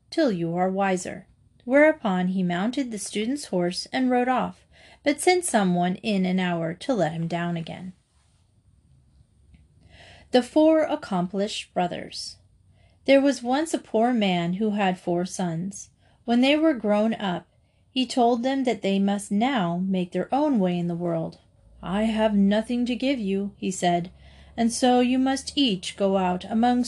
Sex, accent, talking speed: female, American, 165 wpm